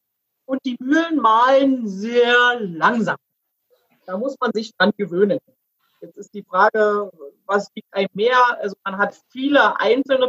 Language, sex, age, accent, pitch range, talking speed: German, female, 30-49, German, 205-260 Hz, 145 wpm